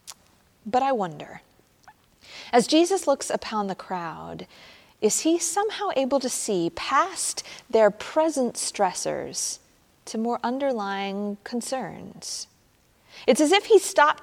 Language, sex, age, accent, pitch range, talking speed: English, female, 30-49, American, 195-285 Hz, 120 wpm